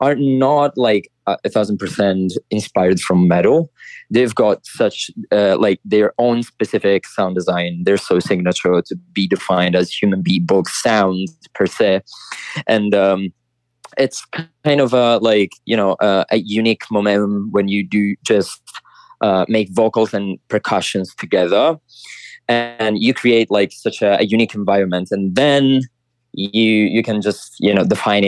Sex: male